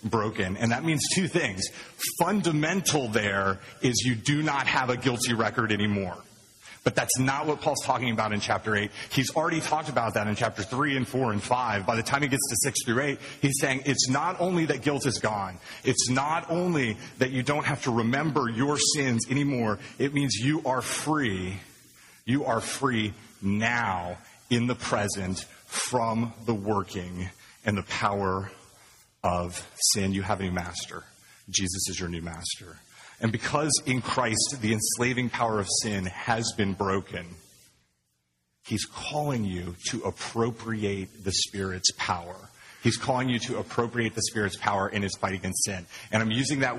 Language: English